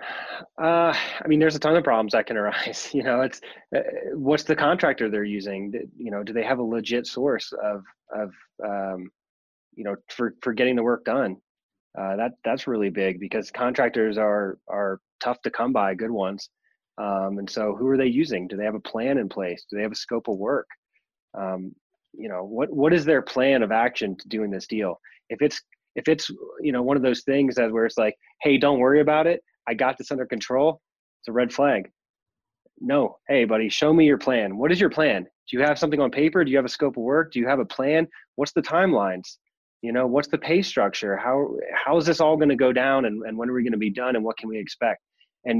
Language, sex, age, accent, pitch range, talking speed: English, male, 20-39, American, 110-140 Hz, 235 wpm